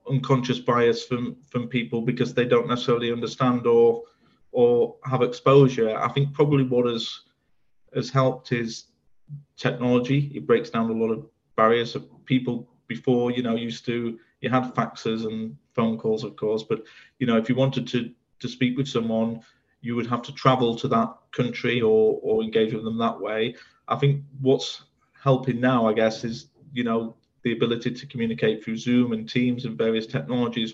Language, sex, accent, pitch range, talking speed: English, male, British, 115-135 Hz, 180 wpm